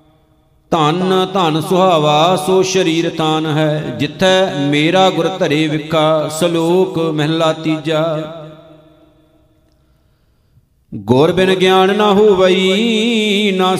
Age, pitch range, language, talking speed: 50-69, 155-185 Hz, Punjabi, 85 wpm